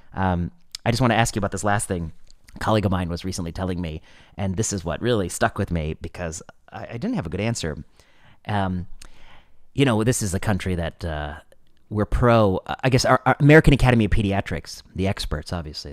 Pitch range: 95-120 Hz